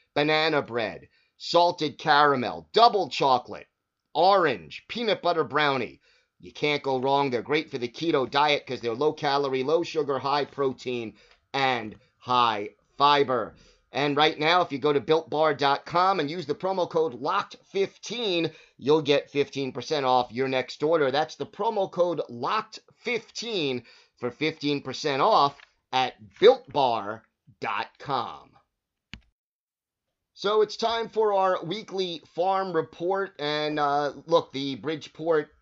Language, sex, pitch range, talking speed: English, male, 135-165 Hz, 120 wpm